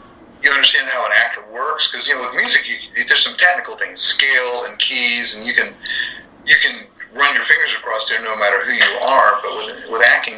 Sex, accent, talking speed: male, American, 220 wpm